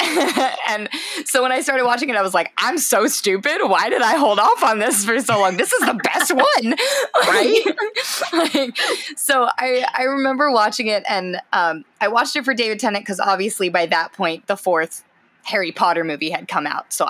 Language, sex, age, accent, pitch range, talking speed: English, female, 20-39, American, 180-250 Hz, 205 wpm